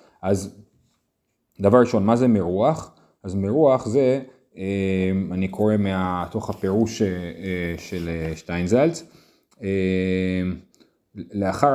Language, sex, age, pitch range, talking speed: Hebrew, male, 30-49, 95-120 Hz, 95 wpm